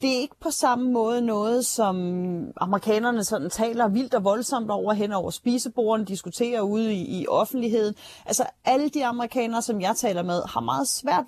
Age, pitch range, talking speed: 30-49, 195-245 Hz, 175 wpm